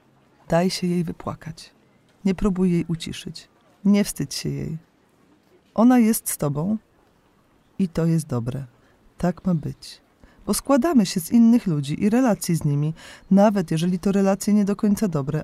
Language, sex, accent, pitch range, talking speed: Polish, female, native, 155-205 Hz, 160 wpm